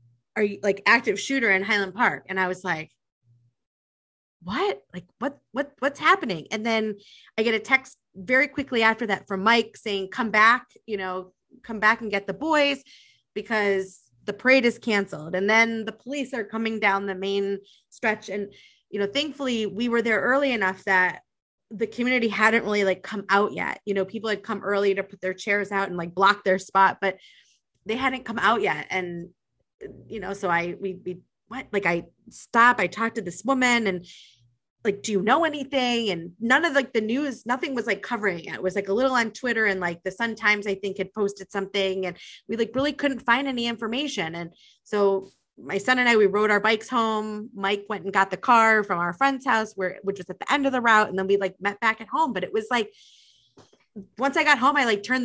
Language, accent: English, American